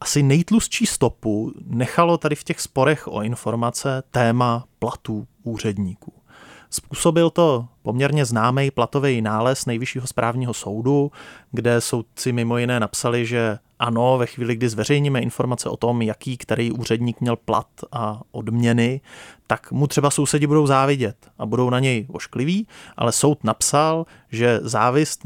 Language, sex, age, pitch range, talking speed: Czech, male, 30-49, 115-145 Hz, 140 wpm